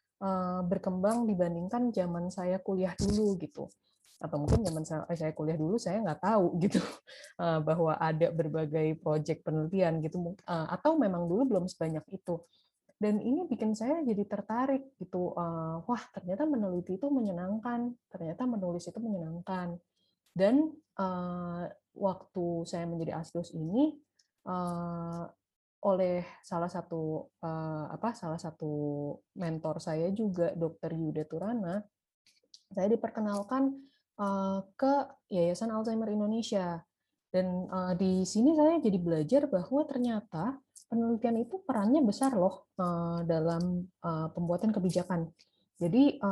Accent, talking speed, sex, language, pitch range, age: native, 110 wpm, female, Indonesian, 170-220 Hz, 20-39